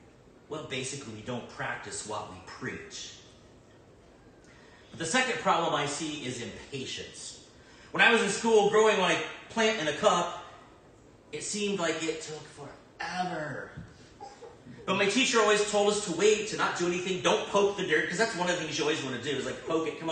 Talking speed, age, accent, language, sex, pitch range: 195 wpm, 40-59, American, English, male, 150-215 Hz